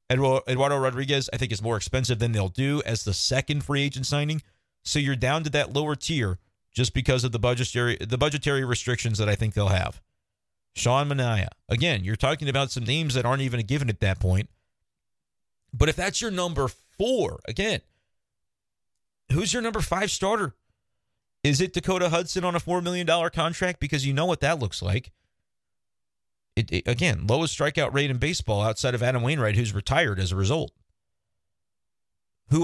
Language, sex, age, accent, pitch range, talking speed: English, male, 40-59, American, 110-145 Hz, 180 wpm